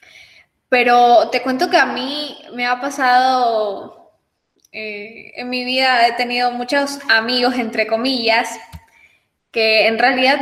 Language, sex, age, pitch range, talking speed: Spanish, female, 10-29, 215-275 Hz, 125 wpm